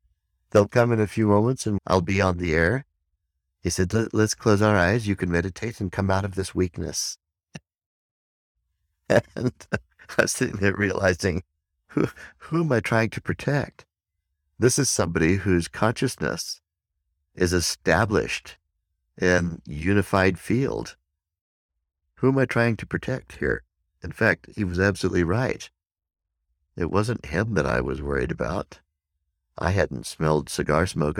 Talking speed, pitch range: 145 wpm, 75-95 Hz